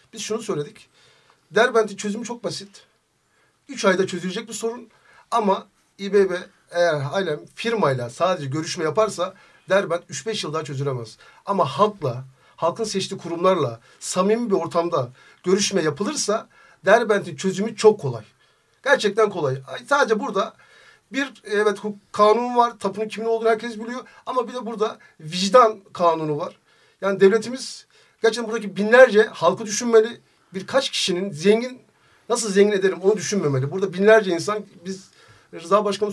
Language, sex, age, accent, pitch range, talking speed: Turkish, male, 60-79, native, 185-225 Hz, 135 wpm